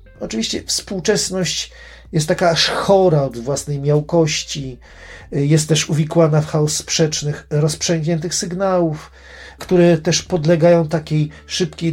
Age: 40-59